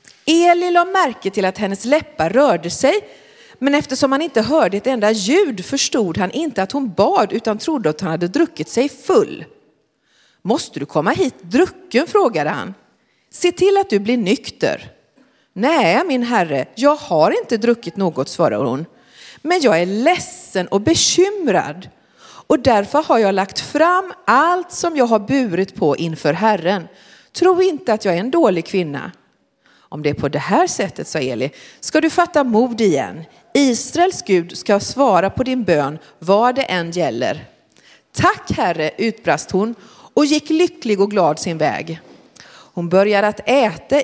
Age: 40-59